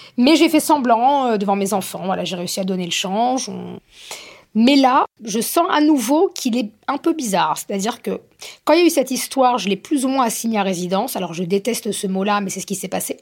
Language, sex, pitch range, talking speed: French, female, 195-250 Hz, 240 wpm